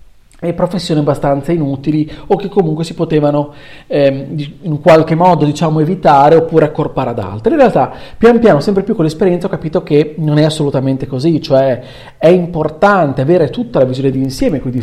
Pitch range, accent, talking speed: 140-195 Hz, native, 180 wpm